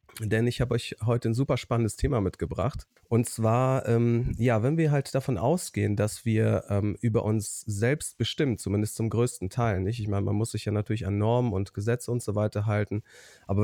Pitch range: 105-120 Hz